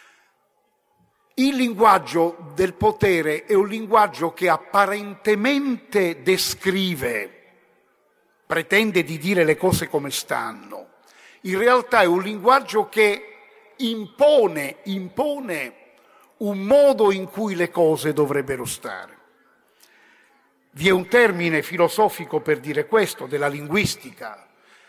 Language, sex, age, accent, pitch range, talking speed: Italian, male, 50-69, native, 175-250 Hz, 105 wpm